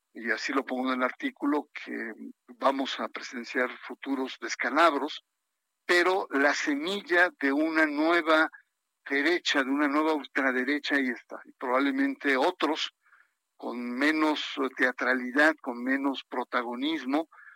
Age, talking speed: 50-69, 120 wpm